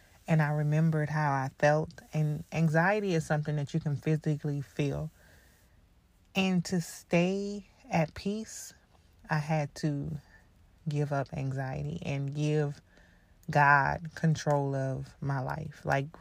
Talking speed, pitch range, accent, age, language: 125 wpm, 140-160 Hz, American, 20-39, English